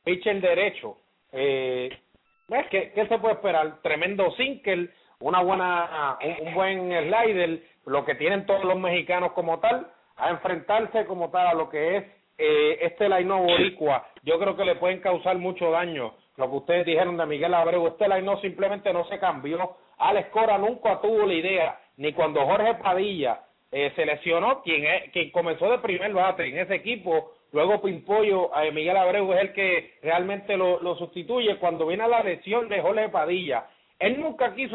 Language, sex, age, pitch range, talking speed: English, male, 30-49, 170-215 Hz, 180 wpm